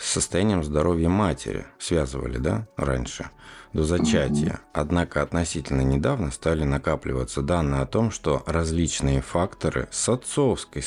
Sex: male